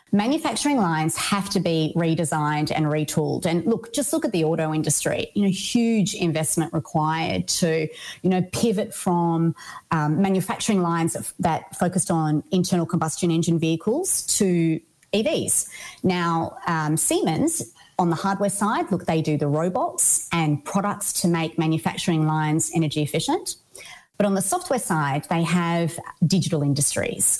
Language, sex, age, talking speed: English, female, 30-49, 145 wpm